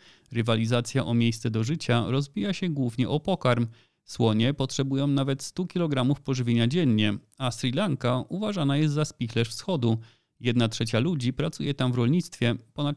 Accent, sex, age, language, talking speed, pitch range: native, male, 30-49, Polish, 155 wpm, 115-145 Hz